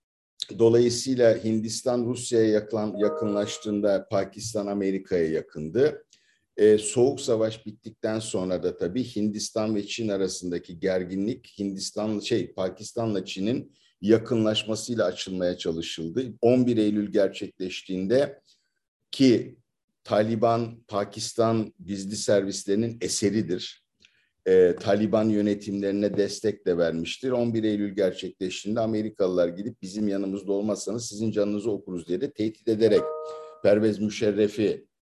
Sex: male